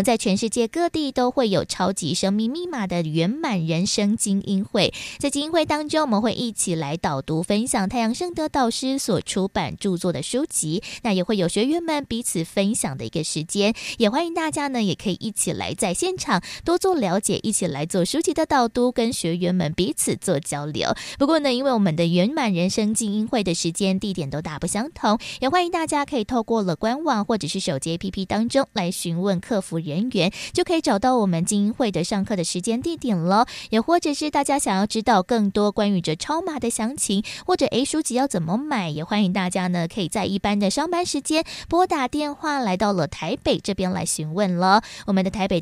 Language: Chinese